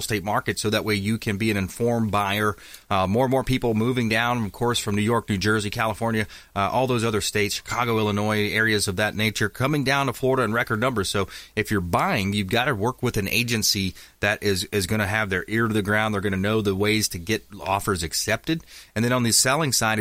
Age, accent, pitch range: 30-49, American, 100-115 Hz